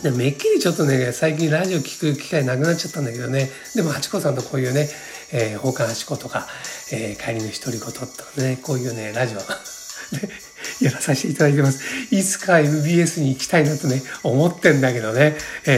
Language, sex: Japanese, male